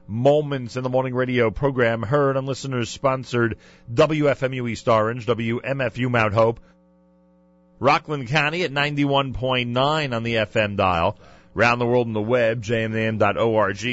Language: English